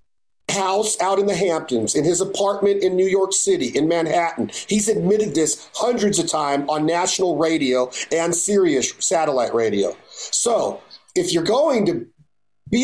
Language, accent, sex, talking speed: English, American, male, 155 wpm